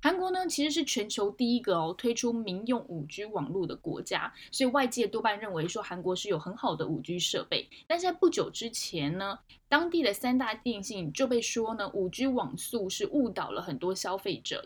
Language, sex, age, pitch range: Chinese, female, 10-29, 190-260 Hz